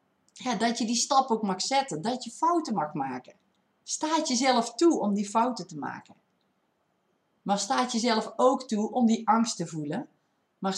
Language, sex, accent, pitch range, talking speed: Dutch, female, Dutch, 205-260 Hz, 180 wpm